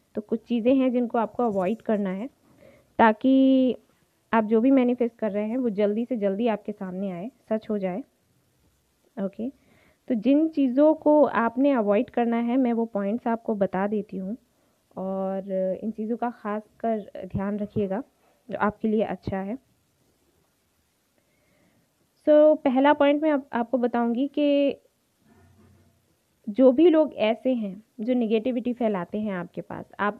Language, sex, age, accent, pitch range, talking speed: Hindi, female, 20-39, native, 205-260 Hz, 155 wpm